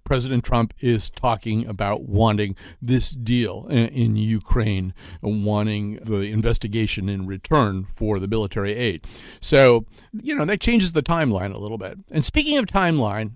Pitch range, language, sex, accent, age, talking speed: 110-150 Hz, English, male, American, 50-69, 155 wpm